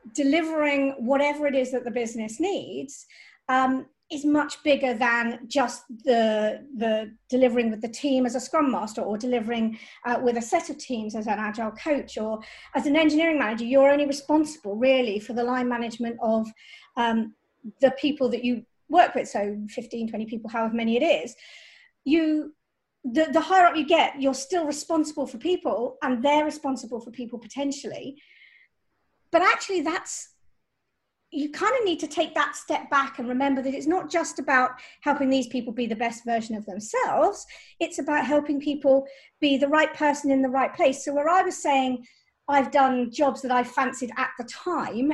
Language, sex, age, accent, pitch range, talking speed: English, female, 40-59, British, 240-300 Hz, 180 wpm